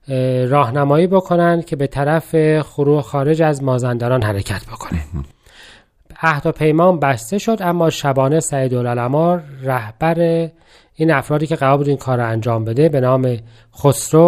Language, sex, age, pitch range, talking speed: Persian, male, 40-59, 130-170 Hz, 130 wpm